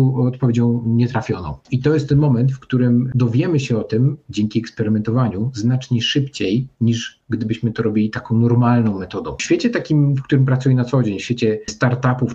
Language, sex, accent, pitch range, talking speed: Polish, male, native, 115-135 Hz, 175 wpm